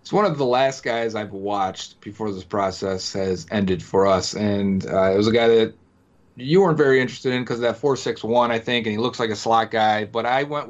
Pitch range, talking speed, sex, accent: 110-135 Hz, 245 wpm, male, American